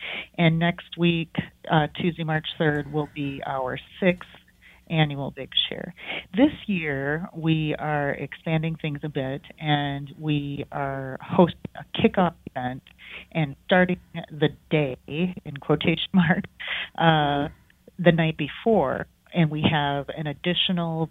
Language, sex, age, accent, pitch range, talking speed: English, female, 40-59, American, 145-165 Hz, 125 wpm